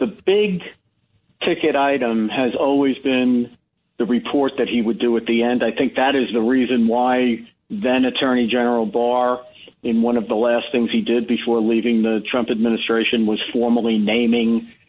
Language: English